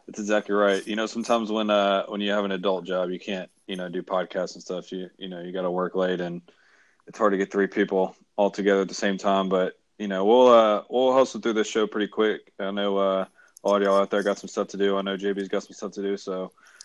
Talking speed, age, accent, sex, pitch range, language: 275 wpm, 20-39, American, male, 95-105 Hz, English